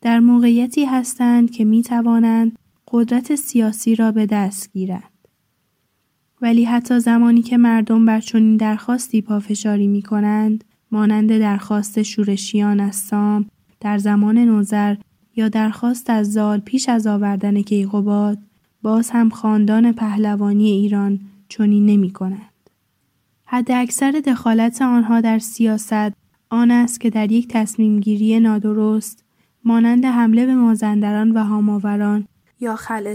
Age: 10-29